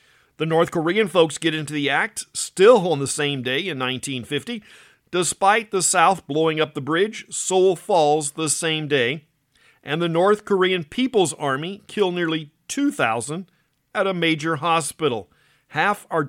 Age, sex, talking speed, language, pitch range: 50-69, male, 155 wpm, English, 140-180 Hz